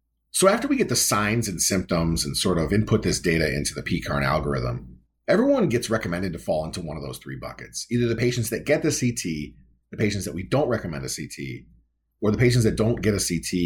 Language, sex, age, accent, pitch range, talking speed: English, male, 40-59, American, 80-120 Hz, 230 wpm